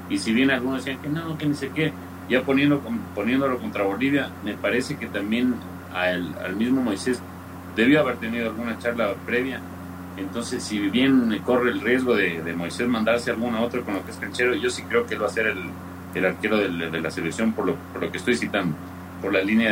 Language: Spanish